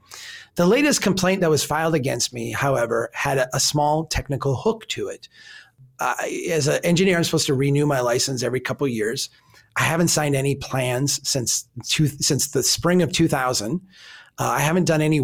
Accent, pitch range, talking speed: American, 135-180 Hz, 190 wpm